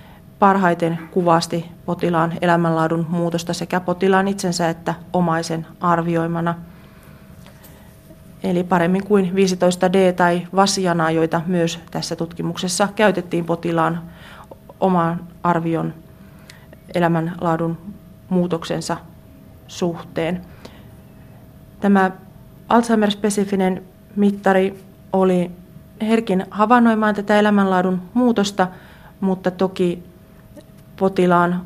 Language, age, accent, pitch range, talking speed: Finnish, 30-49, native, 170-190 Hz, 75 wpm